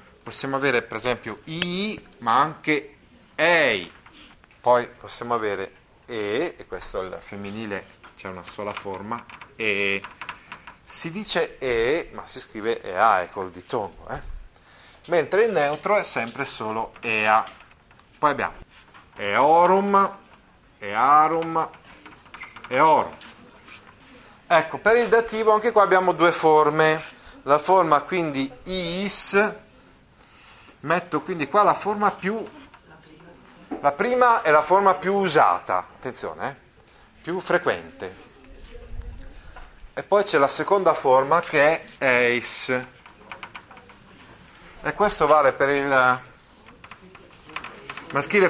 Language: Italian